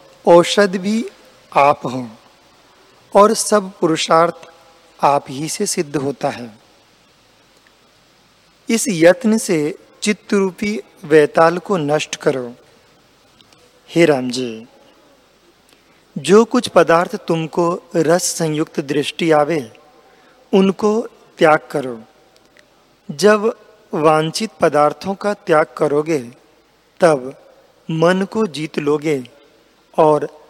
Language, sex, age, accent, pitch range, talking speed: Hindi, male, 40-59, native, 155-200 Hz, 90 wpm